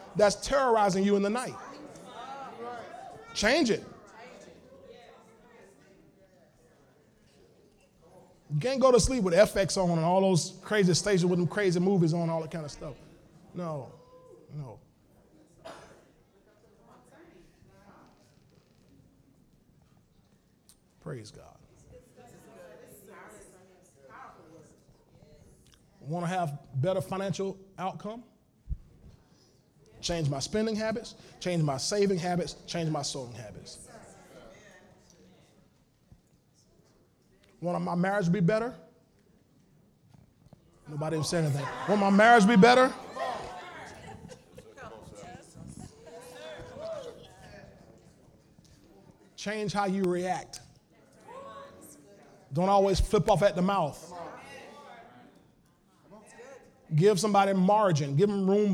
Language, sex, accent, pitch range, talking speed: English, male, American, 165-205 Hz, 90 wpm